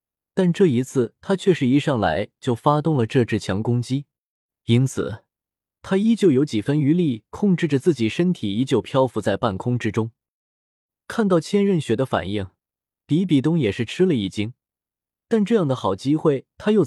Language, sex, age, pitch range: Chinese, male, 20-39, 115-165 Hz